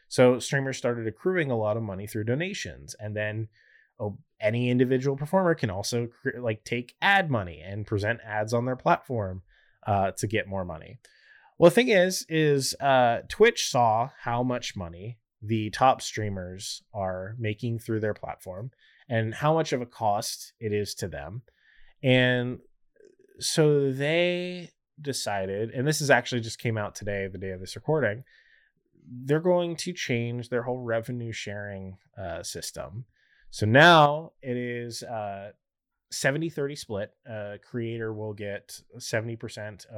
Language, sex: English, male